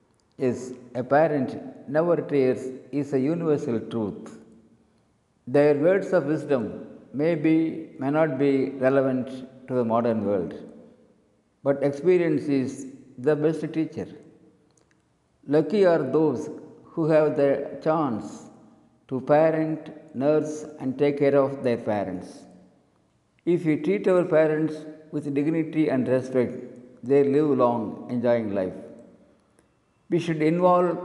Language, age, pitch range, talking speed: Tamil, 50-69, 125-155 Hz, 120 wpm